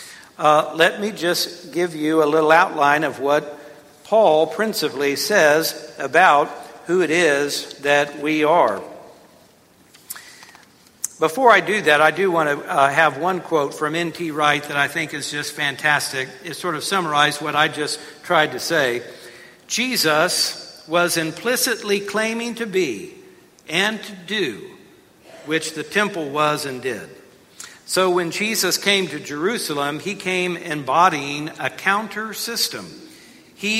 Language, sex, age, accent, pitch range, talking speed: English, male, 60-79, American, 150-200 Hz, 140 wpm